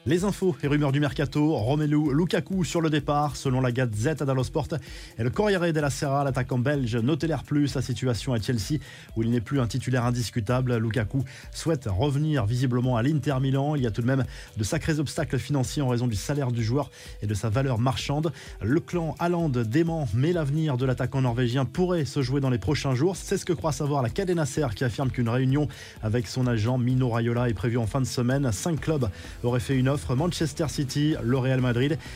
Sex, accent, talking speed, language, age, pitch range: male, French, 215 wpm, French, 20-39, 120-150 Hz